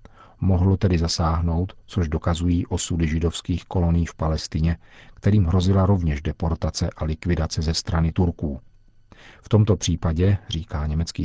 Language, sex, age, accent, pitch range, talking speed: Czech, male, 50-69, native, 85-100 Hz, 130 wpm